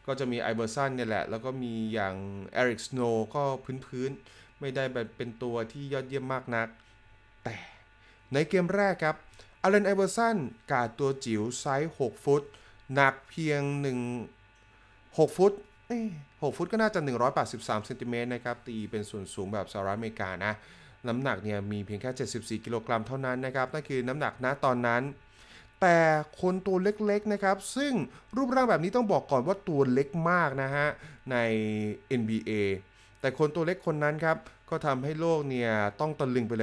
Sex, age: male, 20-39